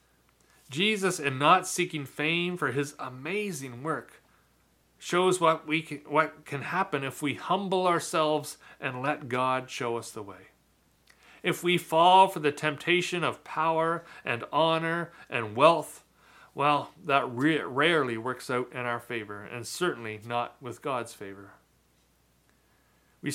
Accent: American